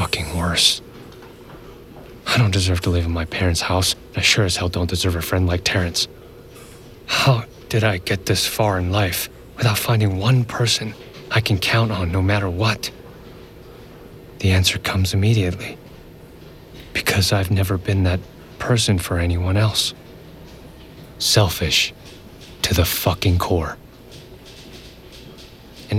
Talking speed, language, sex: 135 wpm, English, male